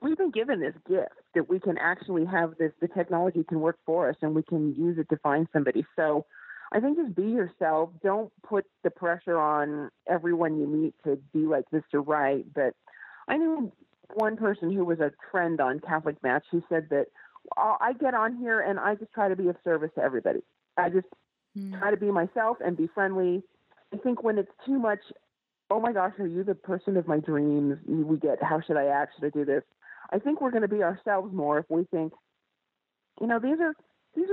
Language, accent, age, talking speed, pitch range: English, American, 40-59, 215 wpm, 155-215 Hz